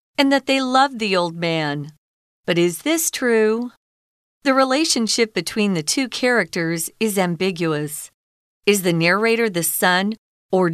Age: 40-59